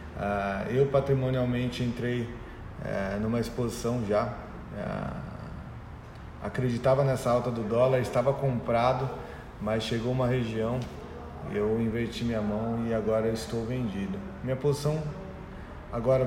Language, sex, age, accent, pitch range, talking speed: Portuguese, male, 20-39, Brazilian, 105-125 Hz, 115 wpm